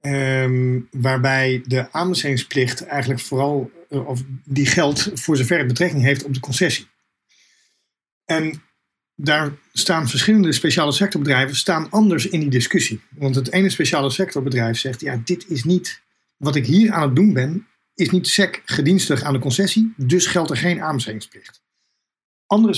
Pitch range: 130-160 Hz